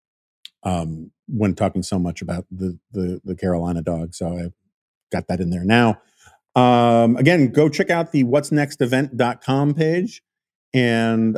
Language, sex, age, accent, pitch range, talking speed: English, male, 40-59, American, 105-125 Hz, 155 wpm